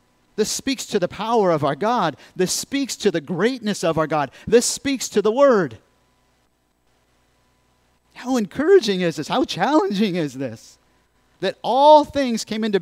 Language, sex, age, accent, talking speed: English, male, 50-69, American, 160 wpm